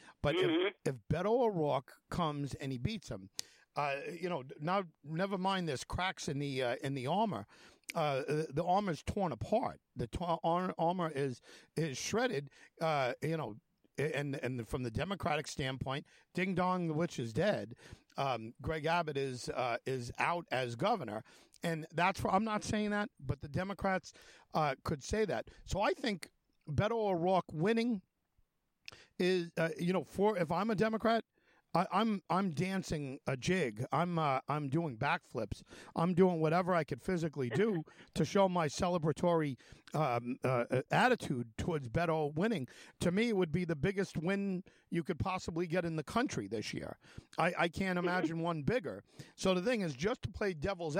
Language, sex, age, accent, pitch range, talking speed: English, male, 50-69, American, 145-190 Hz, 175 wpm